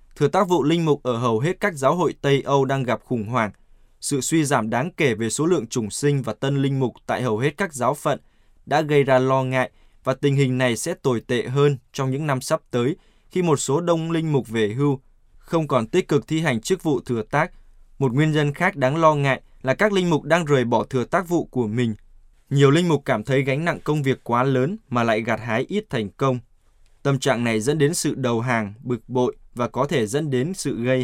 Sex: male